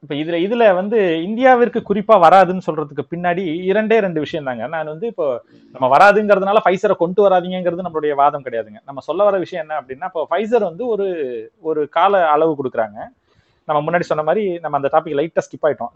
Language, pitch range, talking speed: Tamil, 155-205 Hz, 175 wpm